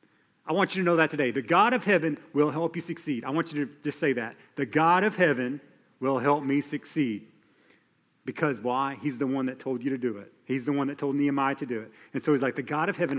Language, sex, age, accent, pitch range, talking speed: English, male, 40-59, American, 140-185 Hz, 265 wpm